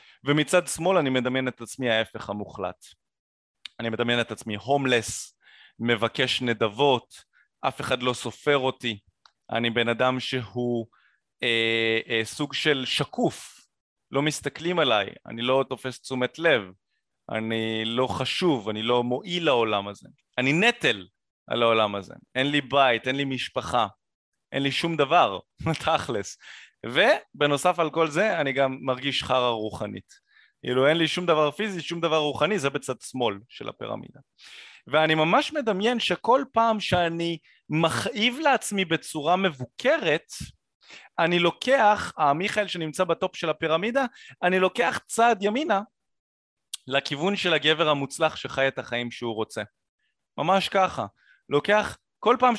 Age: 30-49